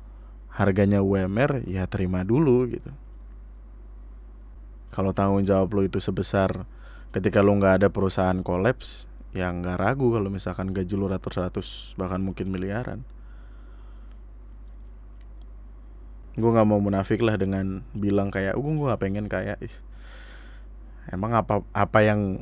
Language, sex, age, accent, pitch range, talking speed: Indonesian, male, 20-39, native, 95-115 Hz, 120 wpm